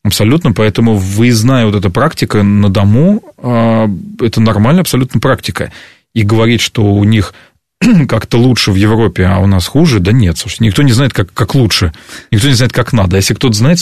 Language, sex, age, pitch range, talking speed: Russian, male, 30-49, 100-120 Hz, 180 wpm